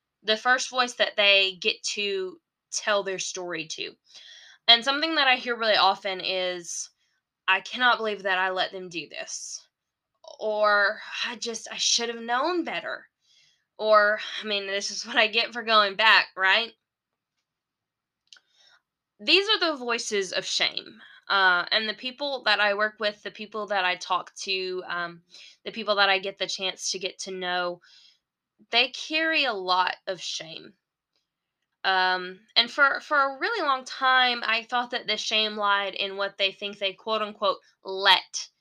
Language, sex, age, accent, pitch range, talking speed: English, female, 10-29, American, 185-220 Hz, 170 wpm